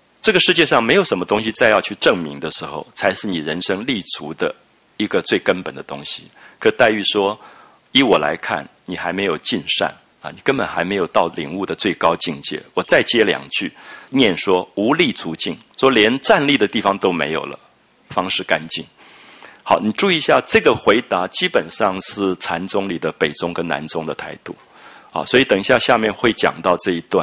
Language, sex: English, male